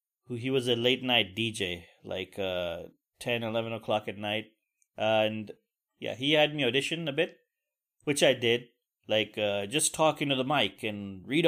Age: 30-49